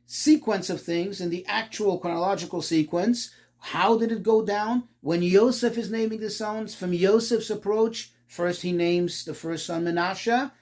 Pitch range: 140-220 Hz